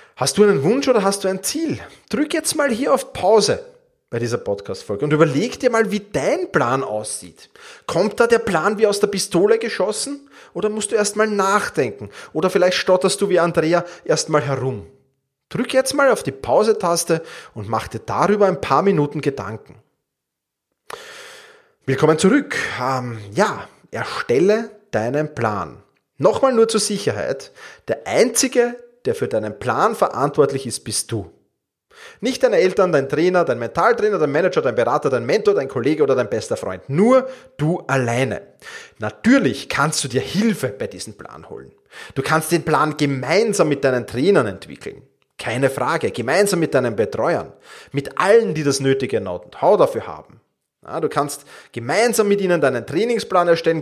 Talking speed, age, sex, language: 165 wpm, 30-49, male, German